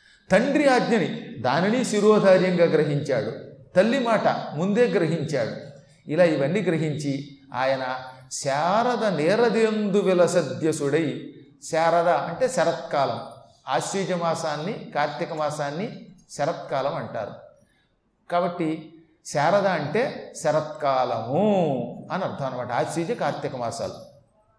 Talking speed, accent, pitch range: 85 wpm, native, 150-220 Hz